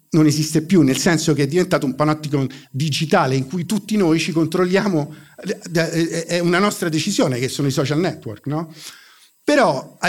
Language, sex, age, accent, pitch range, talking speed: Italian, male, 50-69, native, 140-200 Hz, 170 wpm